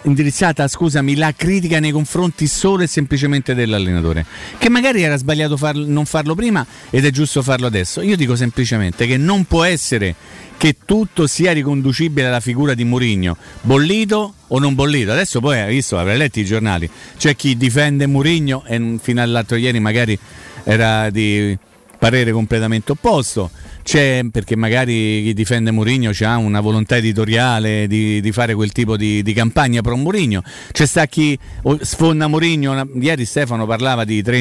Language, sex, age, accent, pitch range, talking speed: Italian, male, 40-59, native, 110-155 Hz, 165 wpm